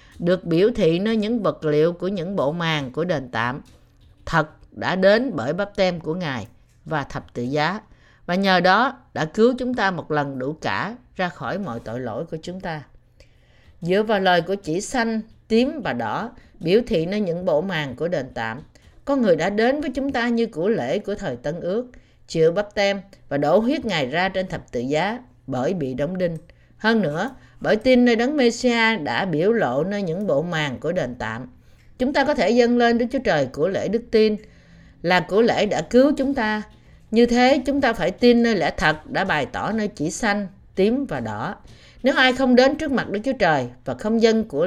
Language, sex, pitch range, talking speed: Vietnamese, female, 155-235 Hz, 215 wpm